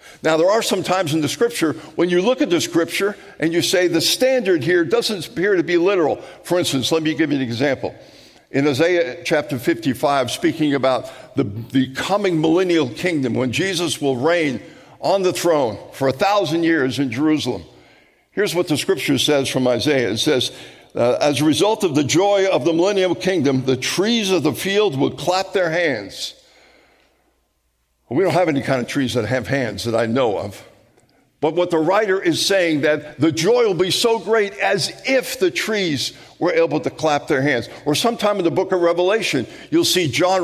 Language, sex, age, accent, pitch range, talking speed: English, male, 60-79, American, 140-190 Hz, 195 wpm